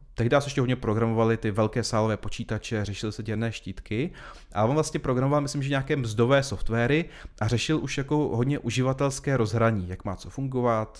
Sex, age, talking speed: male, 30-49, 180 wpm